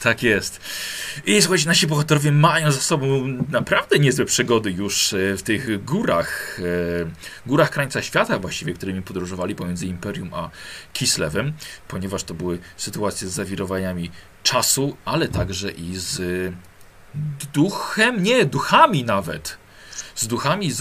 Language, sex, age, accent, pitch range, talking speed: Polish, male, 40-59, native, 95-150 Hz, 125 wpm